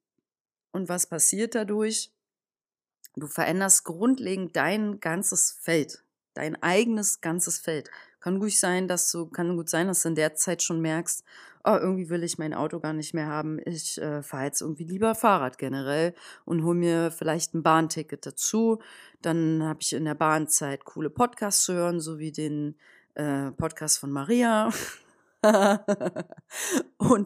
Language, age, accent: German, 30-49, German